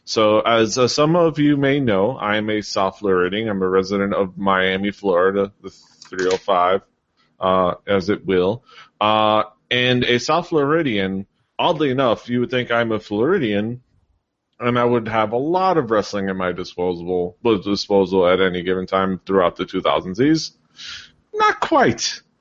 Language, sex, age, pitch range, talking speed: English, male, 30-49, 95-120 Hz, 155 wpm